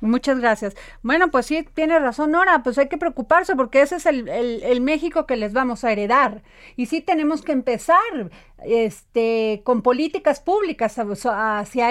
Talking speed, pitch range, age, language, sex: 170 wpm, 215-270 Hz, 40-59, Spanish, female